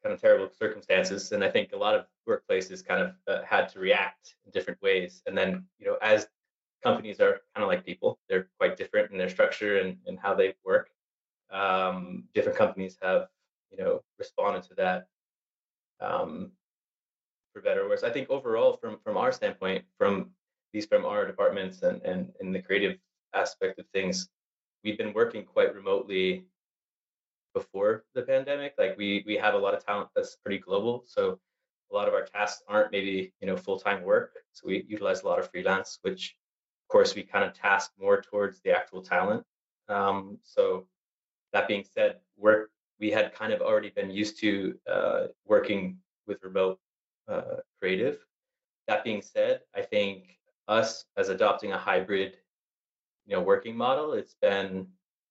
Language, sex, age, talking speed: English, male, 20-39, 180 wpm